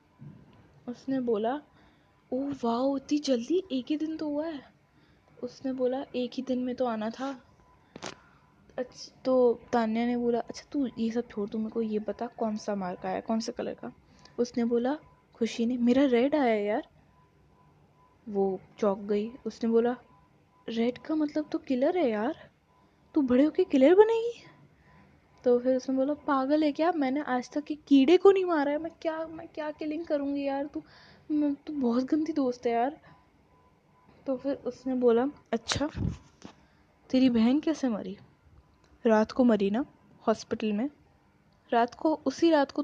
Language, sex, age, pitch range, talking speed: Hindi, female, 10-29, 235-295 Hz, 165 wpm